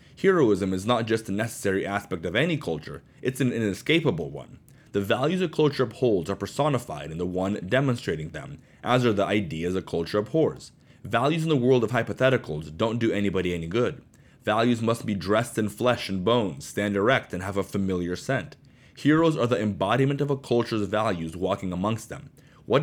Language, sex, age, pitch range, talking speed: English, male, 30-49, 95-135 Hz, 185 wpm